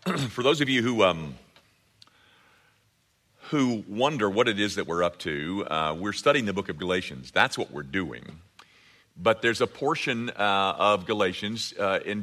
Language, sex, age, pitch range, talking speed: English, male, 50-69, 90-115 Hz, 170 wpm